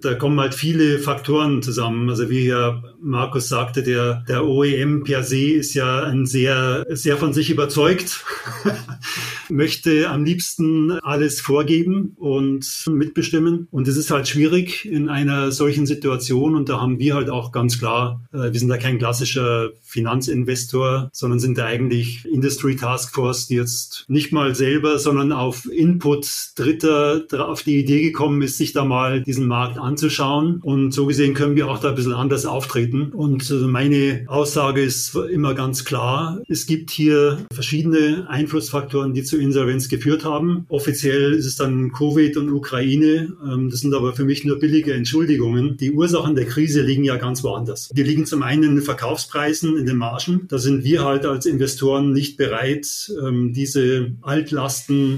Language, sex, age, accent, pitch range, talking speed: German, male, 30-49, German, 130-150 Hz, 165 wpm